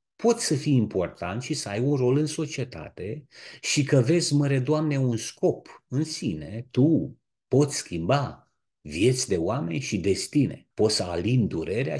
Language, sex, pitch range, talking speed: Romanian, male, 105-140 Hz, 160 wpm